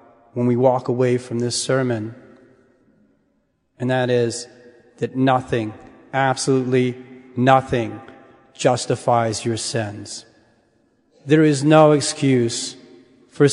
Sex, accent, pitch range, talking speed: male, American, 130-155 Hz, 100 wpm